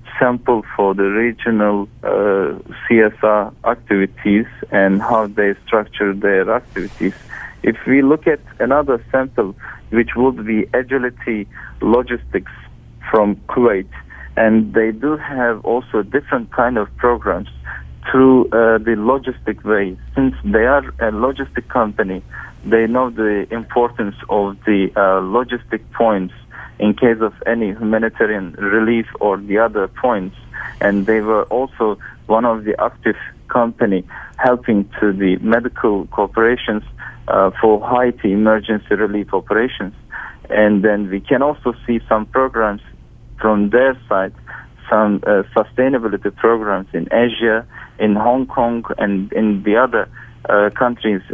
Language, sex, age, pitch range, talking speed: Italian, male, 50-69, 105-120 Hz, 130 wpm